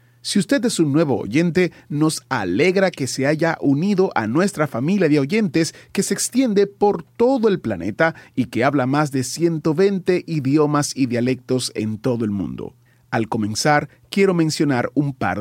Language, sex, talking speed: Spanish, male, 170 wpm